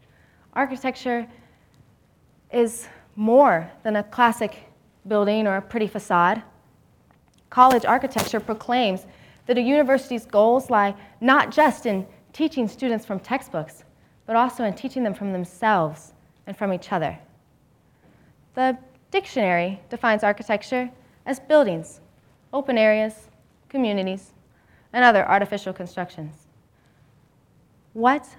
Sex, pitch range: female, 205-260 Hz